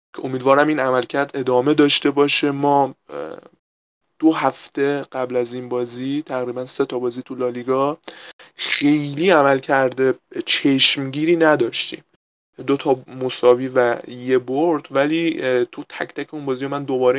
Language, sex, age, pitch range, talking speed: Persian, male, 20-39, 130-145 Hz, 135 wpm